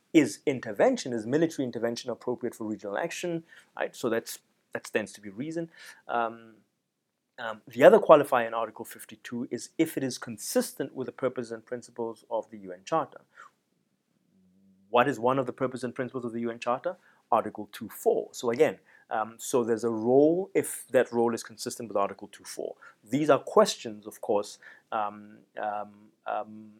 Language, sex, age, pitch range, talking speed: English, male, 30-49, 105-130 Hz, 170 wpm